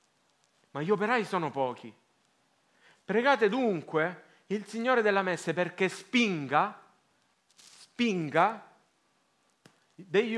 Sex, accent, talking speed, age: male, native, 85 wpm, 40-59